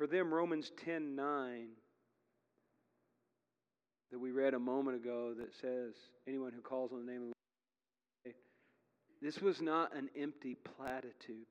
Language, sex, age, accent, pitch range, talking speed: English, male, 40-59, American, 120-150 Hz, 145 wpm